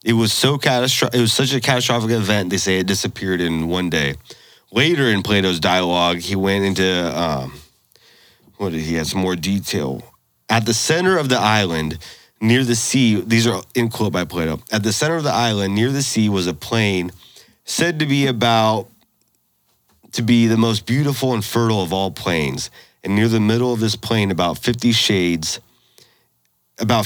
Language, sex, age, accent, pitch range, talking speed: English, male, 30-49, American, 90-120 Hz, 185 wpm